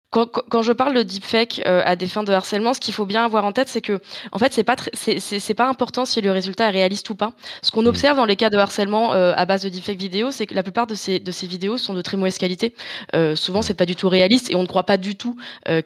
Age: 20-39